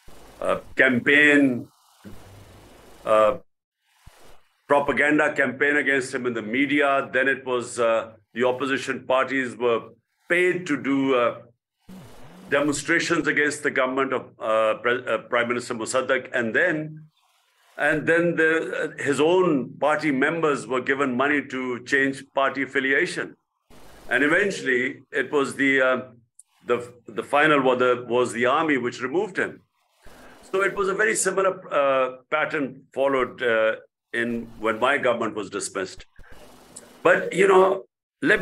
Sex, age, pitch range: male, 50-69, 125-155 Hz